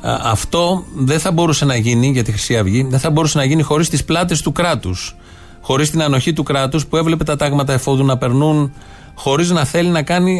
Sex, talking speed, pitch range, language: male, 215 wpm, 125-155 Hz, Greek